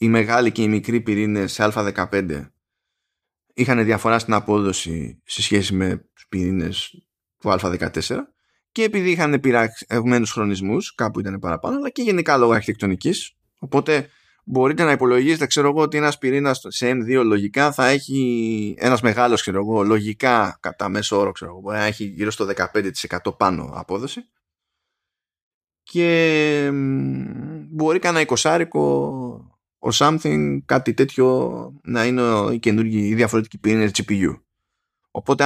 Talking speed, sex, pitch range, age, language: 130 wpm, male, 100-140 Hz, 20-39, Greek